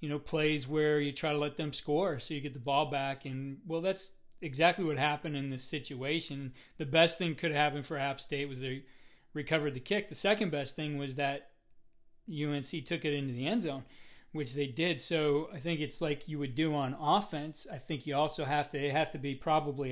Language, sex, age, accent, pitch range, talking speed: English, male, 40-59, American, 140-165 Hz, 225 wpm